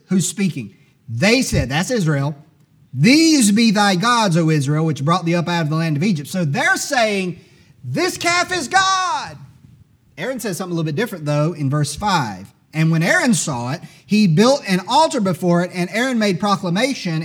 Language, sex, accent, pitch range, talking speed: English, male, American, 155-250 Hz, 190 wpm